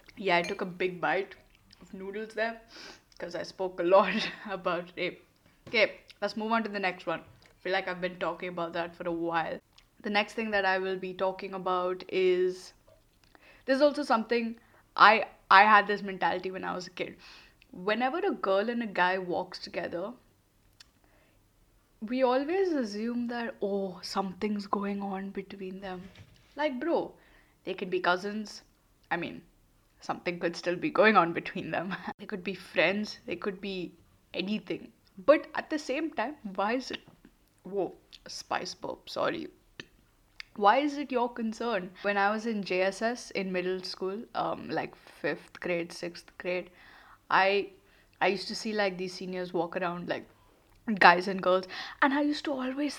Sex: female